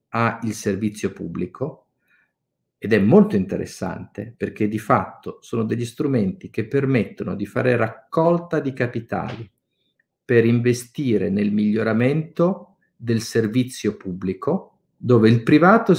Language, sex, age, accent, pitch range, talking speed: Italian, male, 50-69, native, 110-145 Hz, 115 wpm